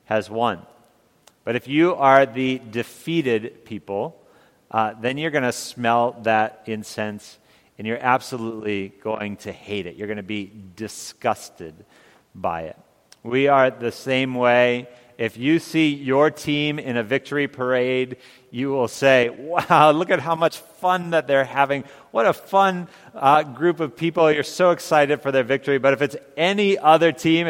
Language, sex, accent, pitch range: English, male, American, 115-150 Hz